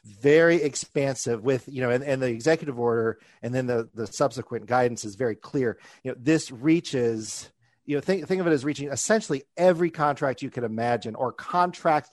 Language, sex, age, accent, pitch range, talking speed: English, male, 40-59, American, 115-145 Hz, 195 wpm